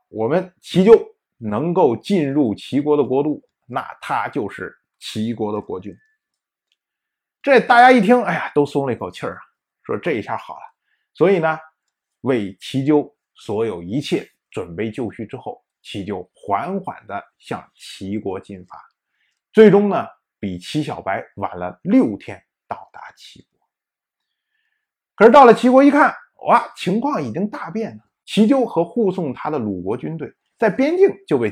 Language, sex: Chinese, male